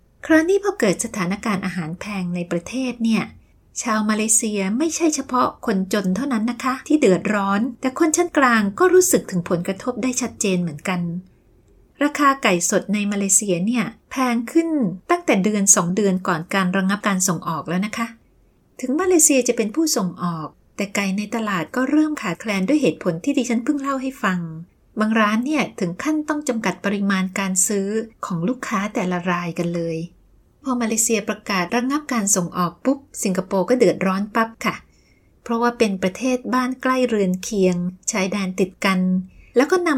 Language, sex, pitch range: Thai, female, 185-250 Hz